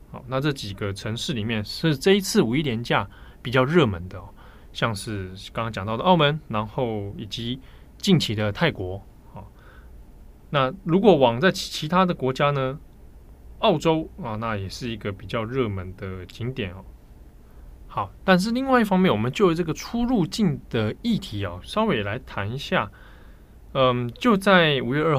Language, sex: Chinese, male